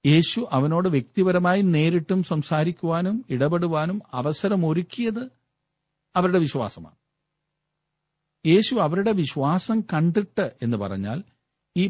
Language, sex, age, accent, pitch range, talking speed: Malayalam, male, 50-69, native, 125-170 Hz, 80 wpm